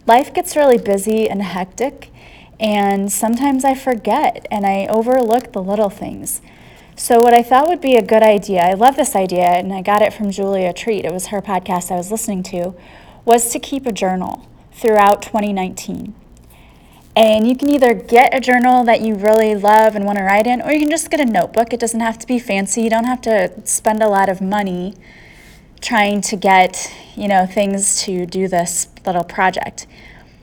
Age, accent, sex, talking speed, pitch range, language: 30-49, American, female, 195 wpm, 195-240 Hz, English